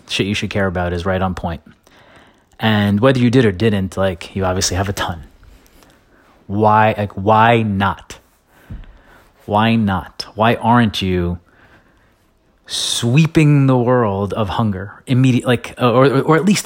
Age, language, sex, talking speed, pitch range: 30-49, English, male, 150 wpm, 95-120 Hz